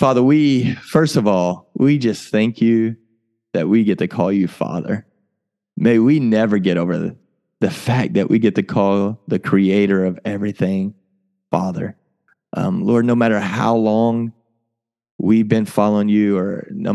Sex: male